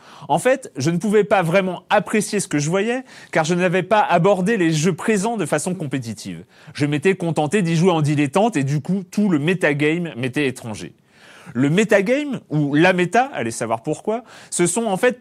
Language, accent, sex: French, French, male